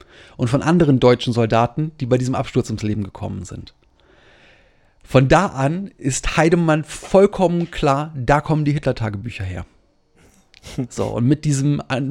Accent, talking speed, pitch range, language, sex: German, 150 wpm, 125-150 Hz, German, male